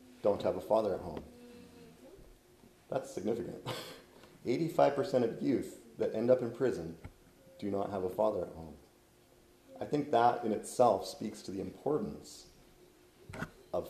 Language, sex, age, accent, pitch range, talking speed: English, male, 30-49, American, 105-135 Hz, 140 wpm